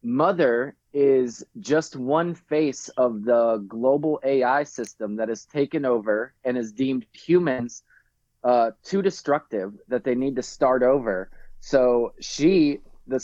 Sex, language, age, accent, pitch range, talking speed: male, English, 20-39, American, 115-135 Hz, 135 wpm